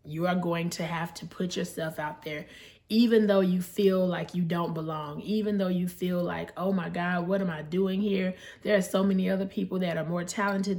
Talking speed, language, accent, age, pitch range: 230 wpm, English, American, 20-39, 170-205 Hz